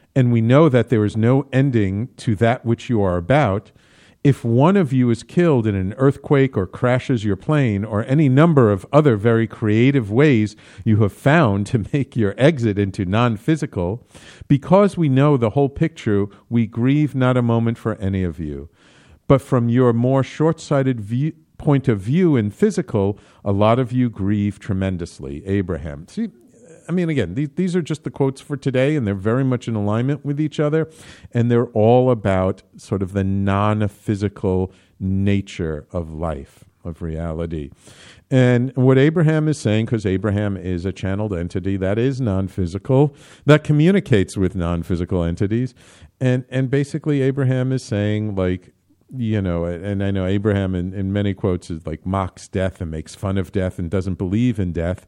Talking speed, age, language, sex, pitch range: 175 wpm, 50-69, English, male, 95-135 Hz